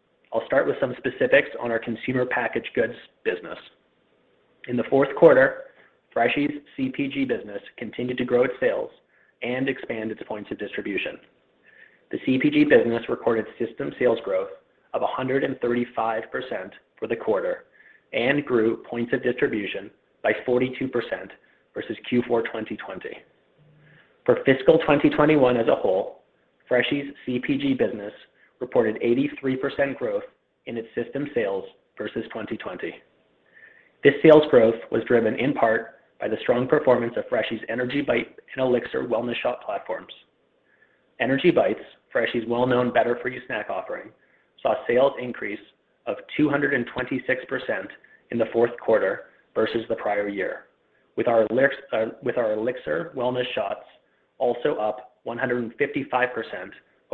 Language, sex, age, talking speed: English, male, 30-49, 130 wpm